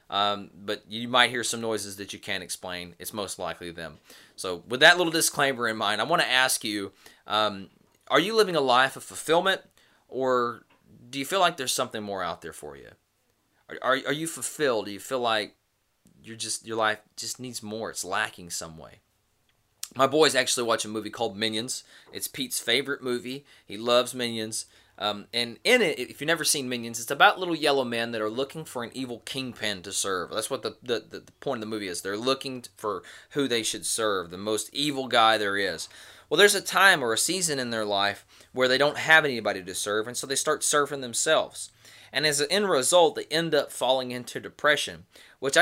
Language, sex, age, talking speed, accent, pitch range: English, male, 20-39, 215 wpm, American, 105-140 Hz